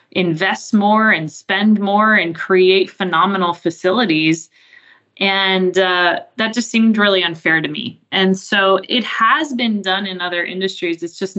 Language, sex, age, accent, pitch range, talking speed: English, female, 20-39, American, 165-200 Hz, 155 wpm